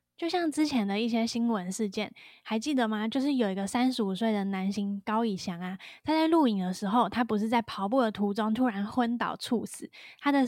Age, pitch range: 10-29, 205-255 Hz